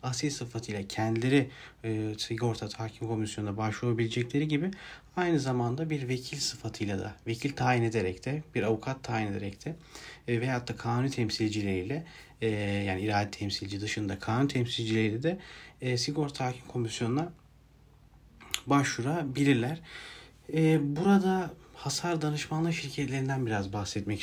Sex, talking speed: male, 120 wpm